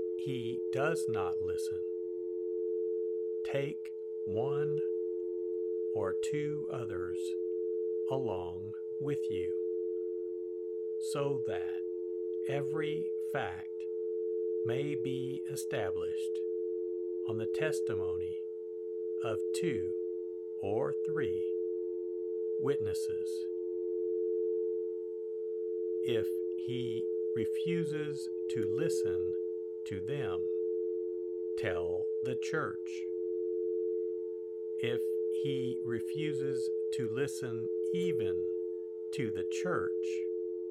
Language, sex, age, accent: English, male, 60-79, American